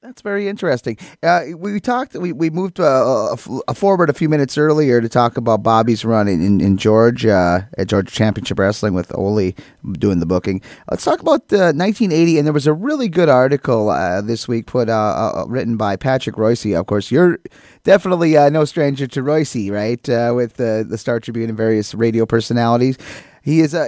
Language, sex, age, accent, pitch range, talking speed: English, male, 30-49, American, 105-145 Hz, 205 wpm